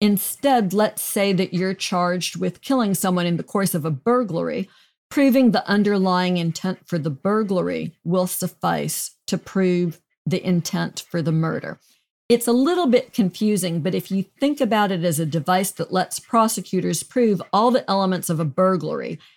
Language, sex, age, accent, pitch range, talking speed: English, female, 50-69, American, 175-220 Hz, 170 wpm